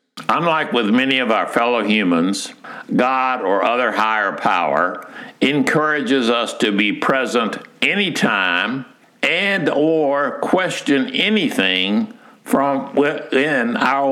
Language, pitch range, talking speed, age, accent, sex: English, 115-160 Hz, 105 wpm, 60-79, American, male